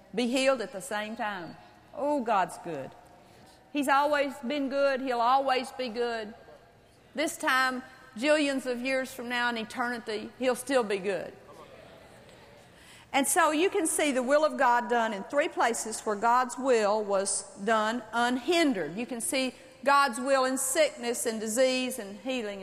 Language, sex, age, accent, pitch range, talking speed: English, female, 50-69, American, 230-300 Hz, 160 wpm